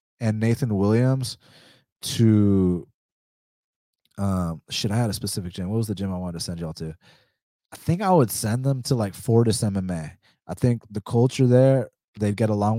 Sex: male